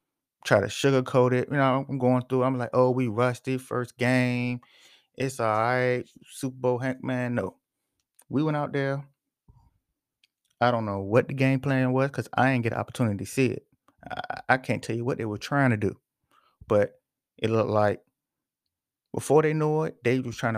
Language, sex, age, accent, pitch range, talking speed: English, male, 30-49, American, 115-135 Hz, 195 wpm